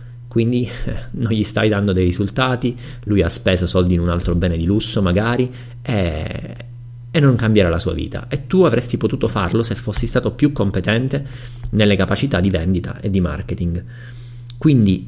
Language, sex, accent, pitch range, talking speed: Italian, male, native, 95-120 Hz, 175 wpm